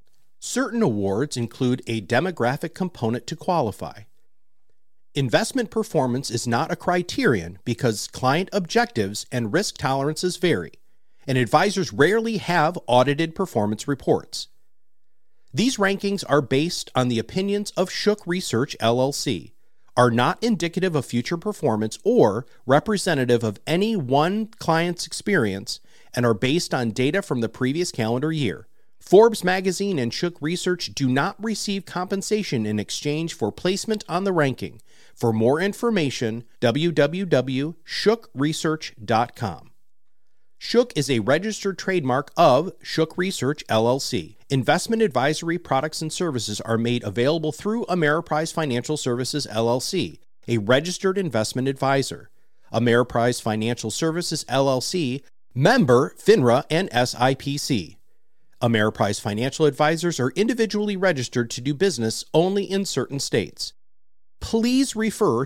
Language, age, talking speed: English, 40-59, 120 wpm